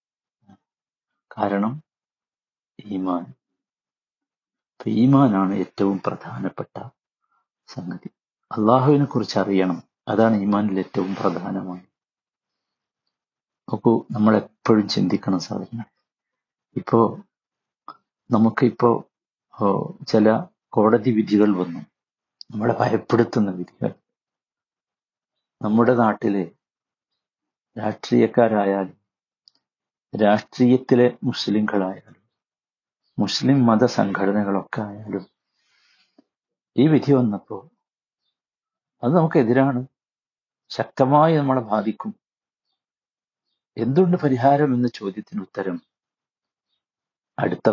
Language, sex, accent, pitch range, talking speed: Malayalam, male, native, 100-130 Hz, 60 wpm